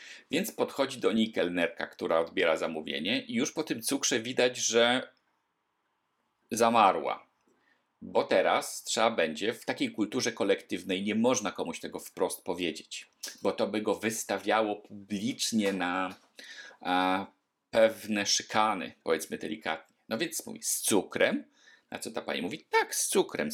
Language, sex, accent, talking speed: Polish, male, native, 140 wpm